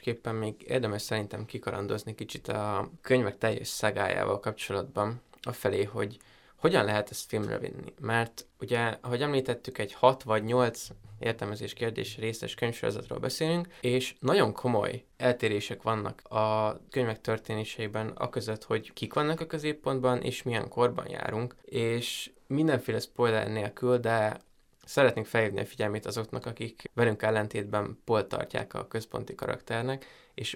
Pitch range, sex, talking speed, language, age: 110-130 Hz, male, 130 wpm, Hungarian, 20-39